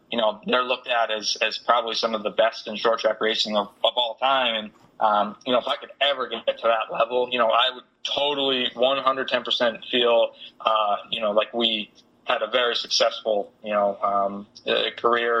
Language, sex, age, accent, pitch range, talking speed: English, male, 20-39, American, 110-120 Hz, 210 wpm